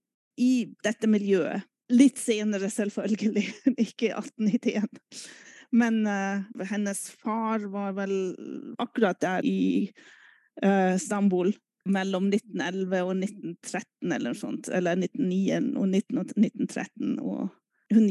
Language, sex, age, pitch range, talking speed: German, female, 30-49, 200-245 Hz, 105 wpm